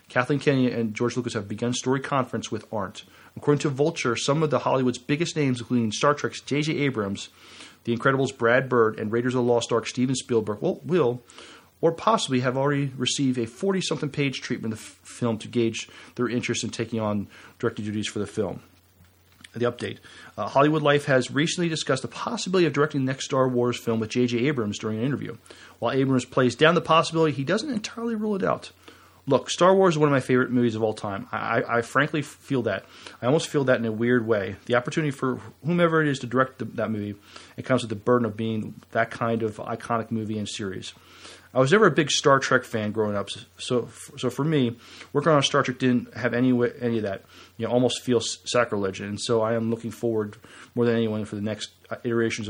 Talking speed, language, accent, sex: 220 wpm, English, American, male